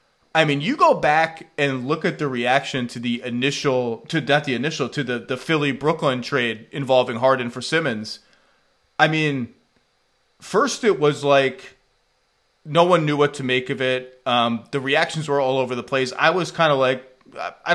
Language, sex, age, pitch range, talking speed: English, male, 30-49, 130-155 Hz, 185 wpm